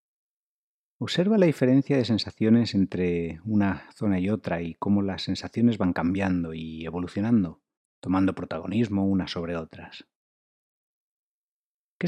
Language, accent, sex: Spanish, Spanish, male